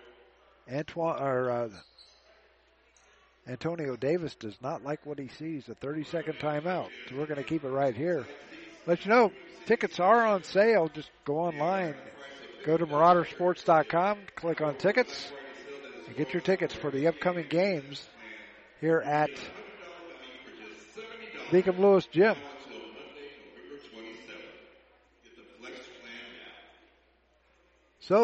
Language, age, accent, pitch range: English, 50-69, American, 125-170 Hz